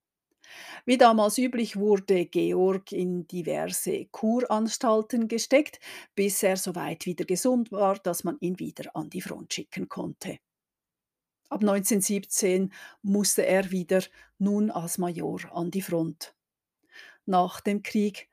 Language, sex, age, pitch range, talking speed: German, female, 50-69, 180-220 Hz, 130 wpm